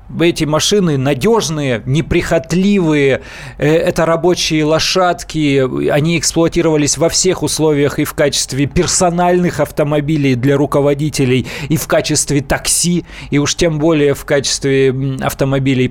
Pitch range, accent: 135-170 Hz, native